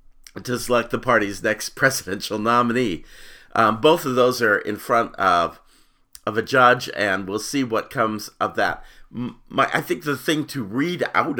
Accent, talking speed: American, 175 wpm